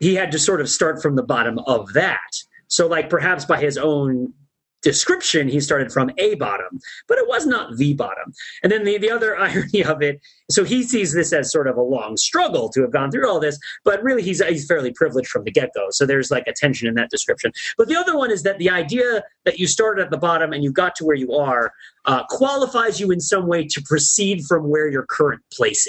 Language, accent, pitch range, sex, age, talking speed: English, American, 145-190 Hz, male, 30-49, 240 wpm